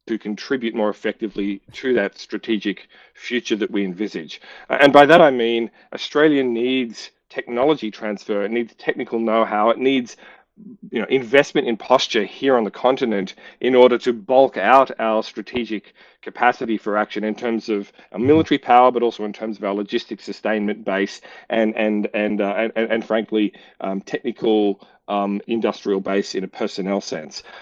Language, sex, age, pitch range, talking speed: English, male, 40-59, 105-125 Hz, 165 wpm